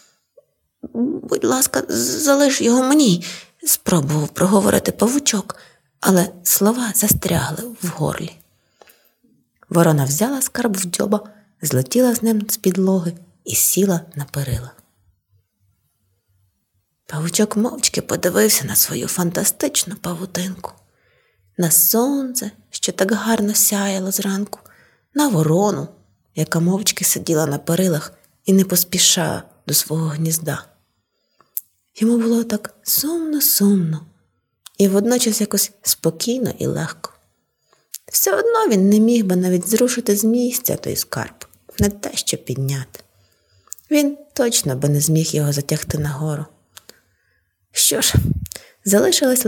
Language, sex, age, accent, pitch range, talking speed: Ukrainian, female, 20-39, native, 155-225 Hz, 110 wpm